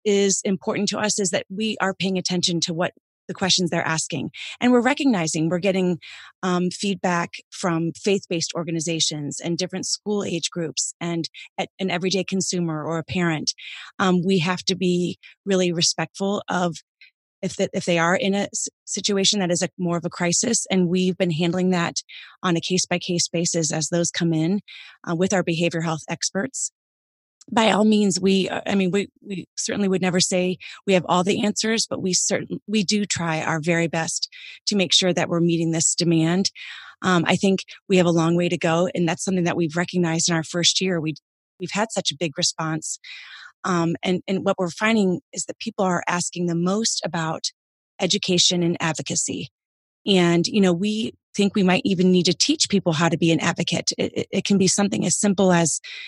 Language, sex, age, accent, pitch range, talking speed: English, female, 30-49, American, 170-195 Hz, 195 wpm